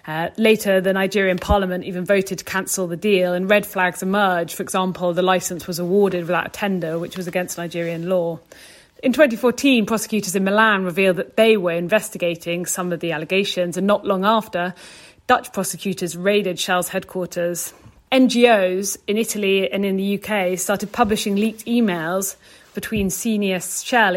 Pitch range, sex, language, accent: 180-210 Hz, female, English, British